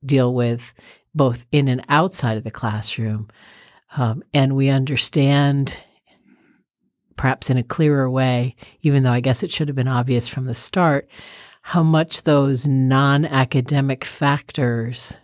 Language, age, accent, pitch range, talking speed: English, 50-69, American, 120-140 Hz, 140 wpm